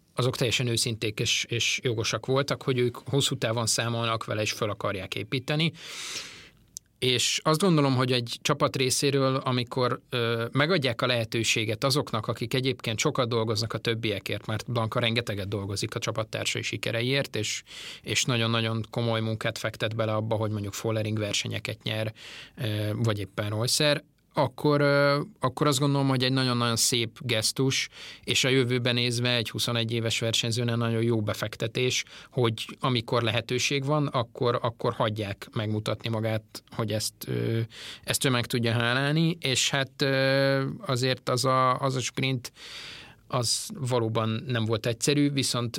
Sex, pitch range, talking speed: male, 115-130 Hz, 145 wpm